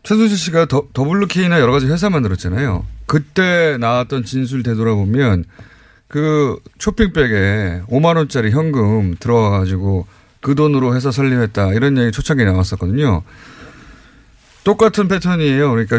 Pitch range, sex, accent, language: 110-155 Hz, male, native, Korean